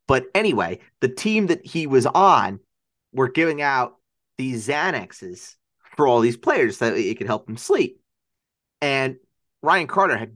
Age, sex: 30-49, male